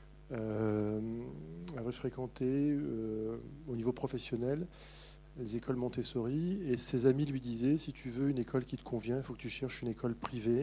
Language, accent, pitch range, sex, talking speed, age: French, French, 115-145 Hz, male, 175 wpm, 50-69